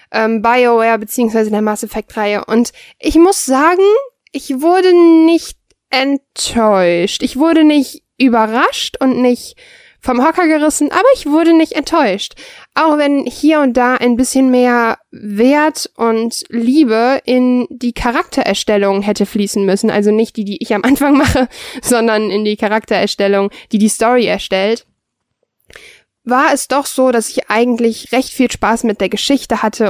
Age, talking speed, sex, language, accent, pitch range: 10-29, 150 wpm, female, German, German, 225-275 Hz